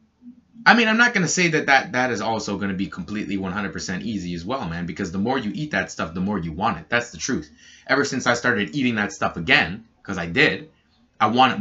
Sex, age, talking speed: male, 20-39, 260 wpm